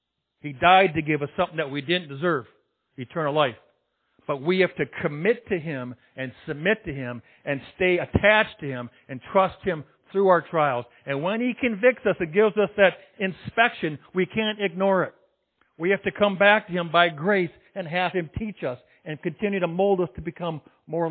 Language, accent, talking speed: English, American, 200 wpm